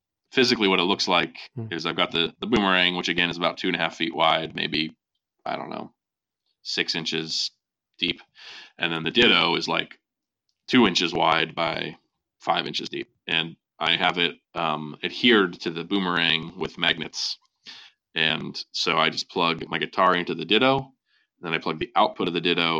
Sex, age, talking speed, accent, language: male, 20-39, 185 wpm, American, English